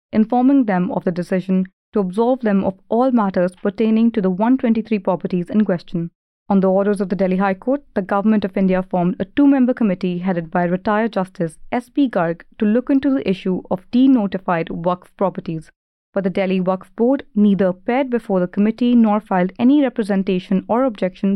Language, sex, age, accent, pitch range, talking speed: English, female, 30-49, Indian, 185-235 Hz, 185 wpm